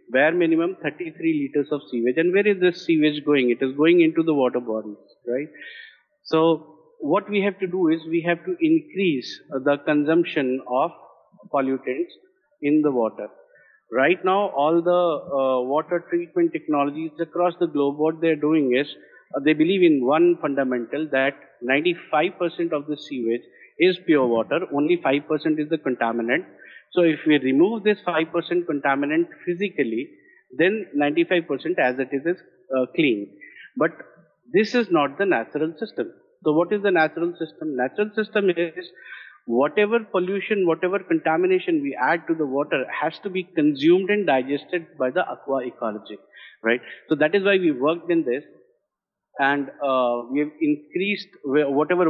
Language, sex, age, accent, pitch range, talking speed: Hindi, male, 50-69, native, 145-200 Hz, 160 wpm